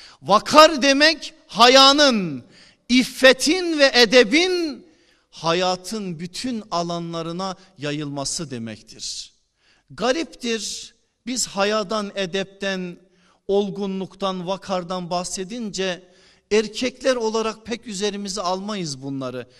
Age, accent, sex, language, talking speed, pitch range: 50-69, native, male, Turkish, 75 wpm, 190-255 Hz